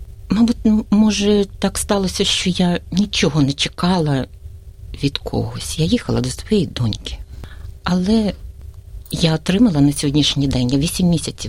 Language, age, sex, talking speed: Ukrainian, 50-69, female, 125 wpm